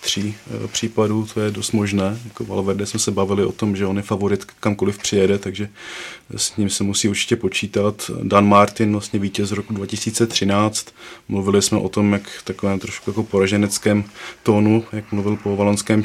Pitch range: 100-110 Hz